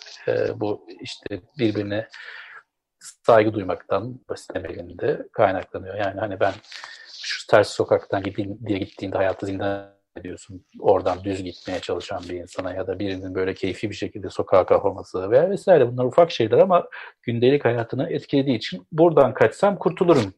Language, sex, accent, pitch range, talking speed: Turkish, male, native, 100-165 Hz, 140 wpm